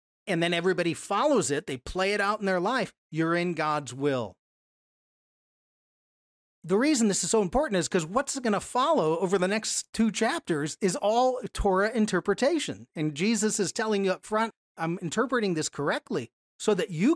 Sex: male